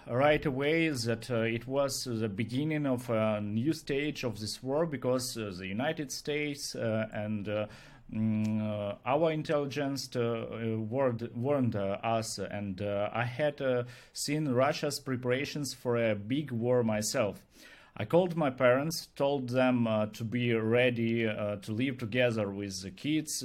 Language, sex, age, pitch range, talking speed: English, male, 40-59, 110-140 Hz, 155 wpm